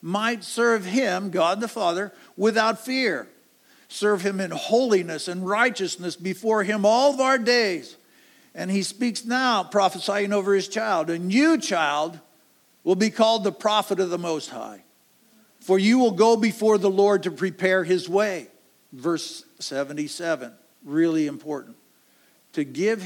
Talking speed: 150 wpm